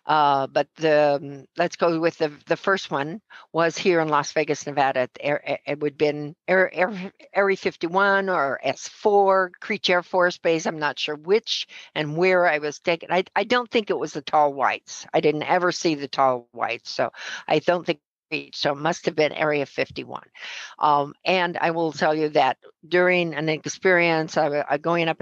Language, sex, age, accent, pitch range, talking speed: English, female, 60-79, American, 150-180 Hz, 200 wpm